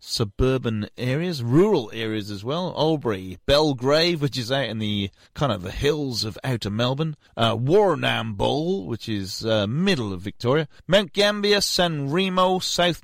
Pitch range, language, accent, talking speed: 110-165 Hz, English, British, 150 wpm